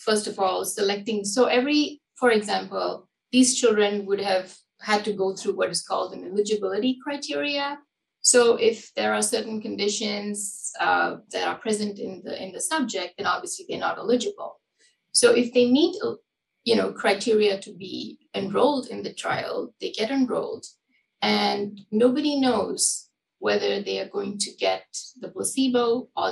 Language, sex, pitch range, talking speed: English, female, 200-245 Hz, 155 wpm